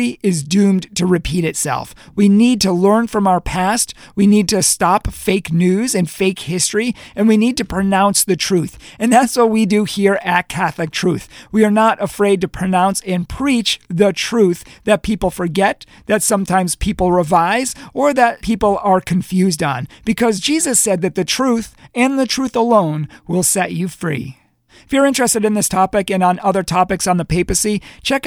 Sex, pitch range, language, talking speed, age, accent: male, 180-215 Hz, English, 185 wpm, 40-59, American